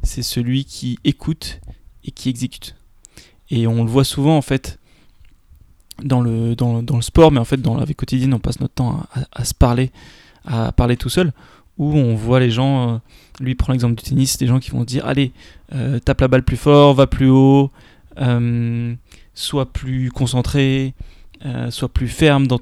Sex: male